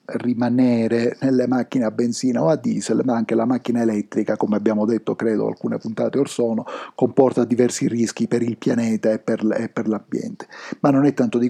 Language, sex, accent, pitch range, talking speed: Italian, male, native, 115-140 Hz, 185 wpm